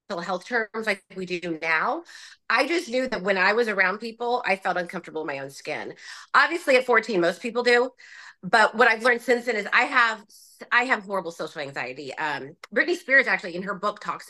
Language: English